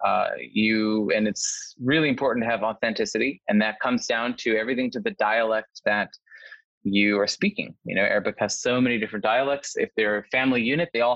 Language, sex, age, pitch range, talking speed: English, male, 20-39, 110-140 Hz, 200 wpm